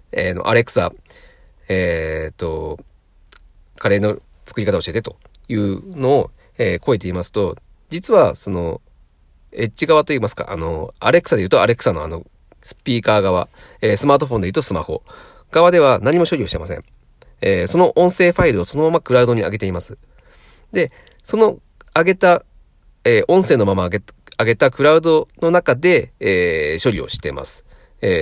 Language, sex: Japanese, male